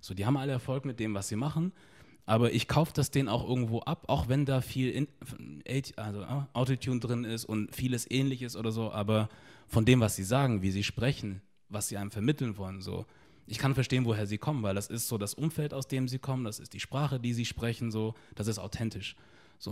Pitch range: 110-145 Hz